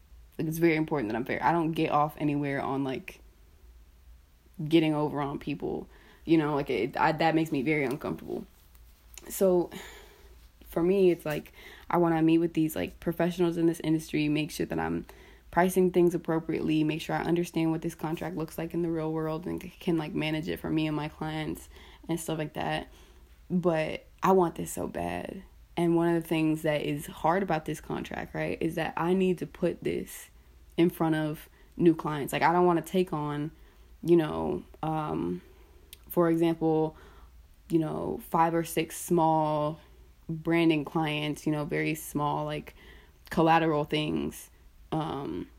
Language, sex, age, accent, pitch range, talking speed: English, female, 20-39, American, 135-165 Hz, 175 wpm